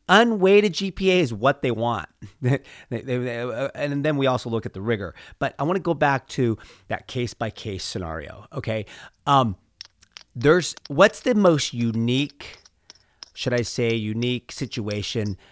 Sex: male